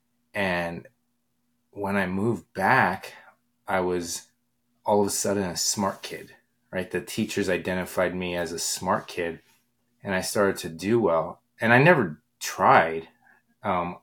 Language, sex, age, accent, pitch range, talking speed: English, male, 30-49, American, 85-115 Hz, 145 wpm